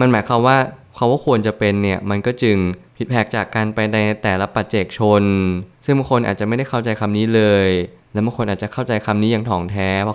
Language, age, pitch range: Thai, 20-39, 100-120 Hz